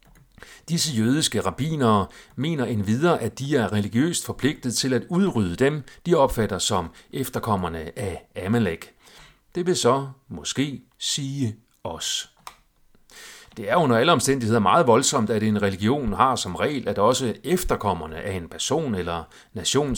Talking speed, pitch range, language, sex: 140 wpm, 100-135 Hz, Danish, male